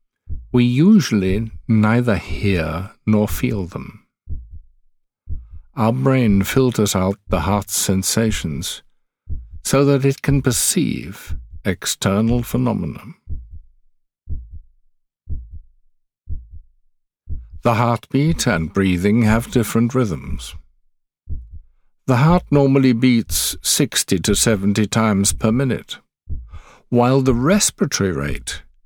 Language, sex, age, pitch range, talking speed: English, male, 60-79, 80-120 Hz, 85 wpm